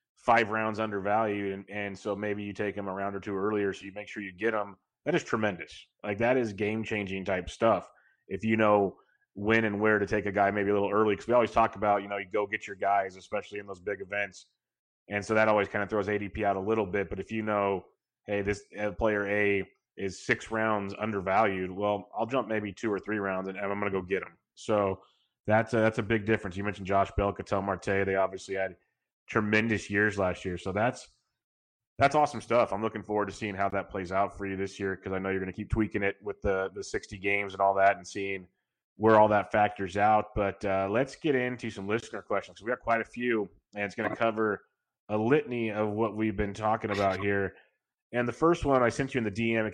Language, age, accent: English, 30-49, American